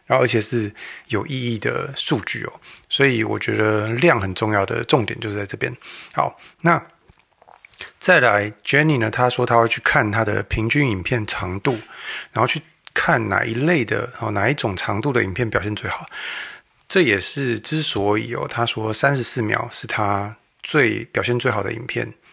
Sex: male